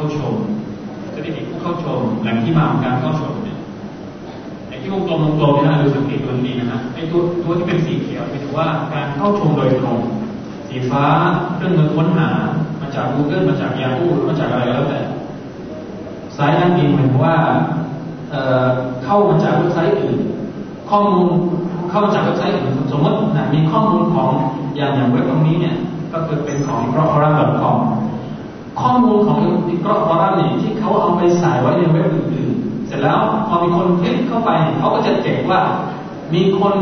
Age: 20-39